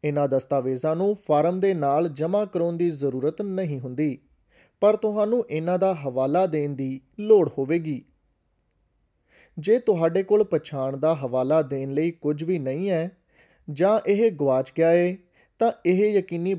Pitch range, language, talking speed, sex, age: 145-190 Hz, Punjabi, 150 wpm, male, 30-49